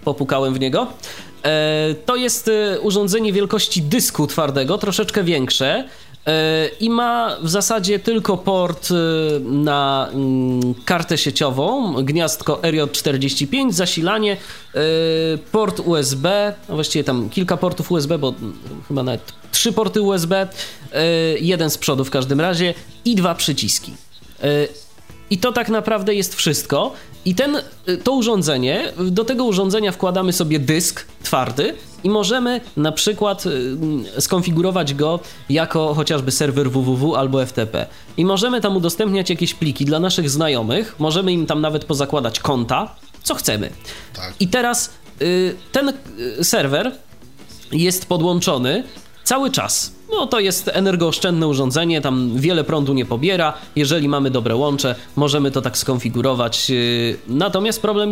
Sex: male